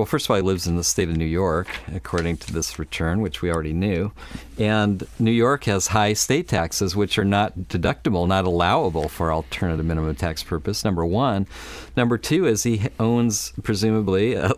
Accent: American